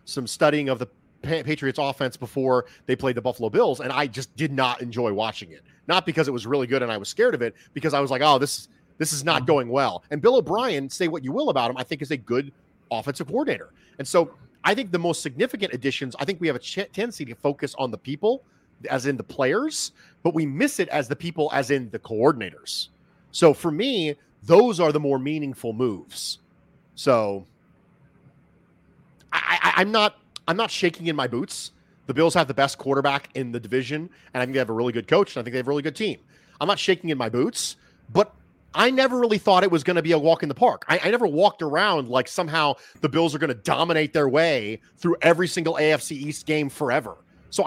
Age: 30-49